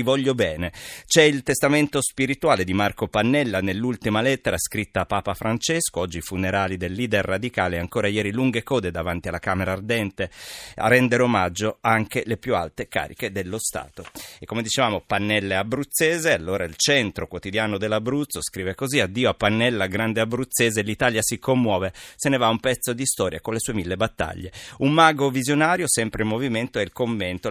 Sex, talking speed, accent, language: male, 170 wpm, native, Italian